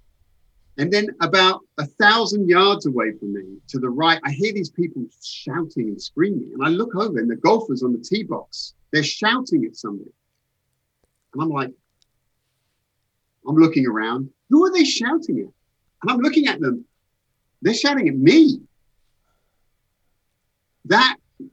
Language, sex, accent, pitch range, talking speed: English, male, British, 120-200 Hz, 155 wpm